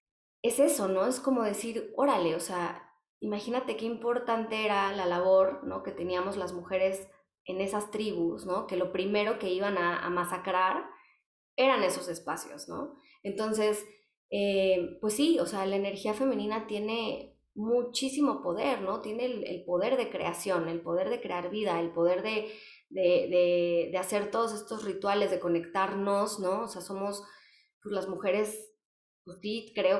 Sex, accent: female, Mexican